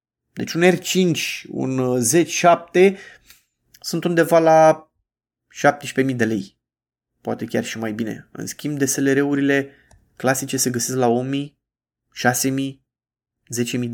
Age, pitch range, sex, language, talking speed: 20-39, 125-155 Hz, male, Romanian, 115 wpm